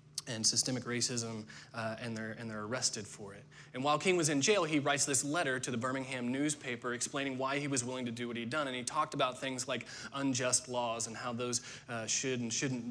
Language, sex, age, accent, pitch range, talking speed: English, male, 20-39, American, 120-140 Hz, 230 wpm